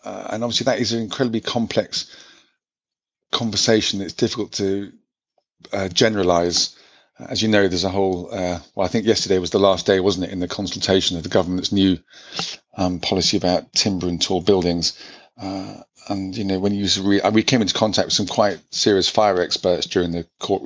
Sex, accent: male, British